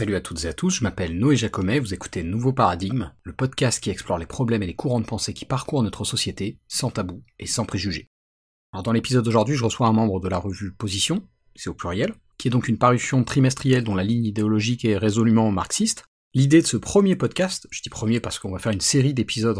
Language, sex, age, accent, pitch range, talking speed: French, male, 40-59, French, 110-135 Hz, 235 wpm